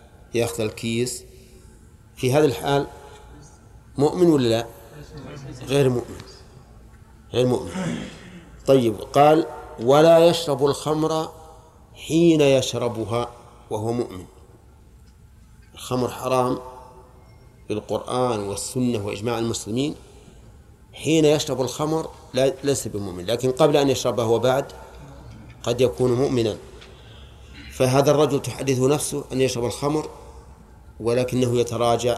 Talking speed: 90 wpm